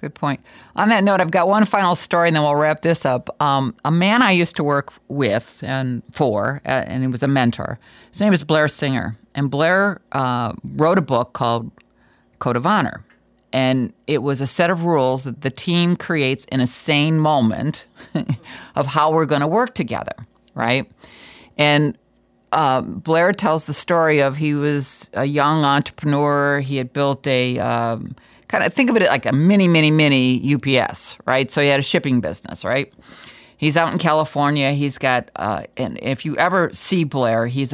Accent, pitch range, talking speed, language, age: American, 130-160 Hz, 190 wpm, English, 50-69